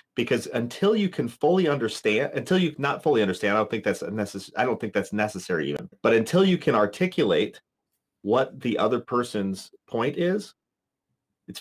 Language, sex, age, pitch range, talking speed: English, male, 30-49, 105-150 Hz, 175 wpm